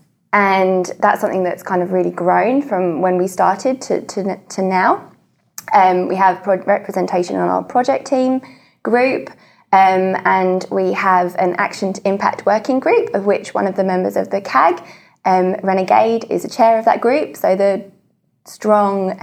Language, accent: English, British